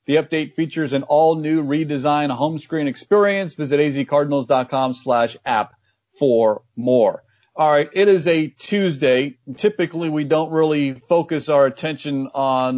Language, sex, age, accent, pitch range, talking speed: English, male, 40-59, American, 135-165 Hz, 135 wpm